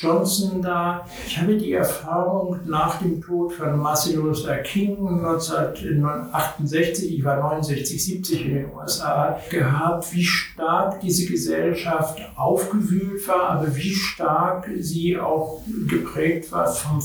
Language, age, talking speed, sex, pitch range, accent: German, 60-79, 125 wpm, male, 155-180 Hz, German